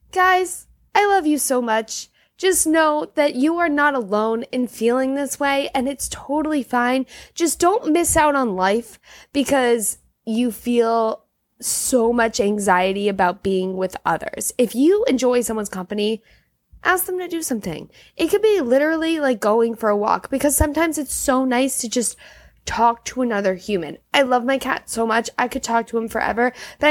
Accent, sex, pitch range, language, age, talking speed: American, female, 225-290 Hz, English, 20-39, 180 wpm